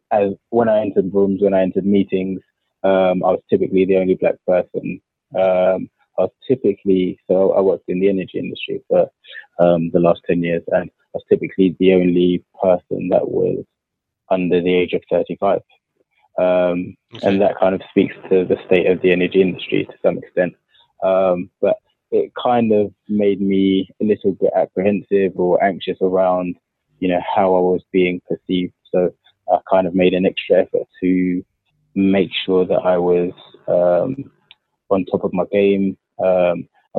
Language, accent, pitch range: English, British, 90-100 Hz